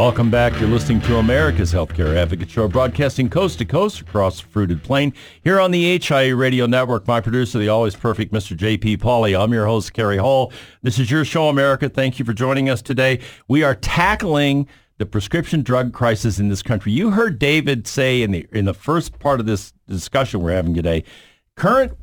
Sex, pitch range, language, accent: male, 105-130 Hz, English, American